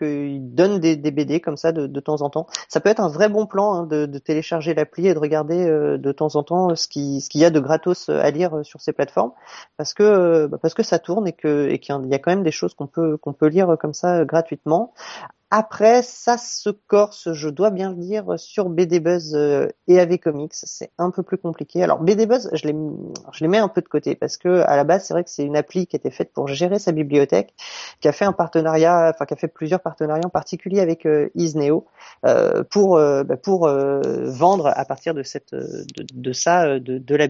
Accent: French